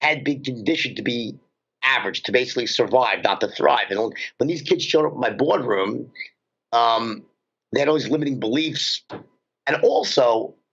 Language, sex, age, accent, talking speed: English, male, 50-69, American, 170 wpm